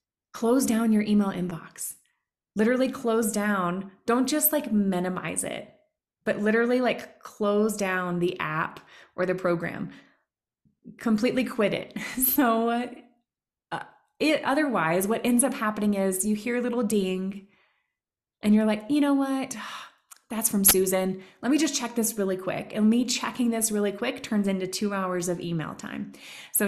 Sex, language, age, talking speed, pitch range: female, English, 20-39, 155 wpm, 190-240 Hz